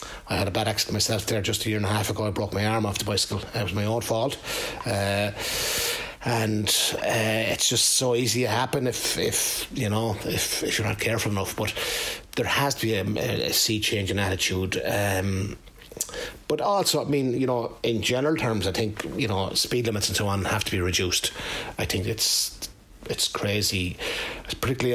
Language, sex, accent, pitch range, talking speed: English, male, Irish, 100-120 Hz, 210 wpm